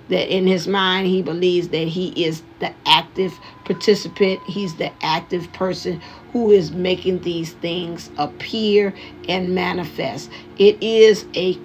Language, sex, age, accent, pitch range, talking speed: English, female, 50-69, American, 175-195 Hz, 140 wpm